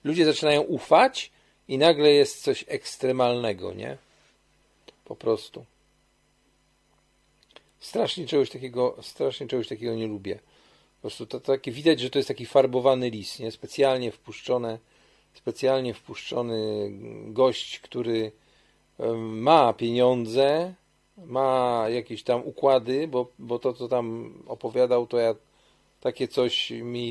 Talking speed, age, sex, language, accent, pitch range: 120 wpm, 40-59, male, Polish, native, 115-135 Hz